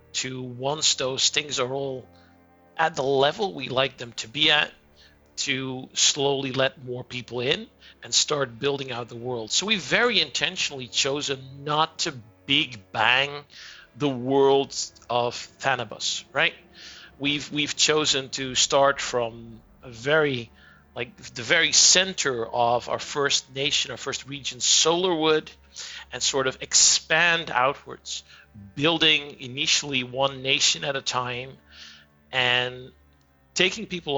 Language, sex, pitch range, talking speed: English, male, 120-145 Hz, 135 wpm